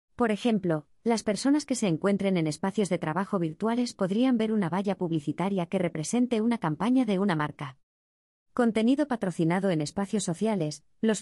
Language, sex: Spanish, female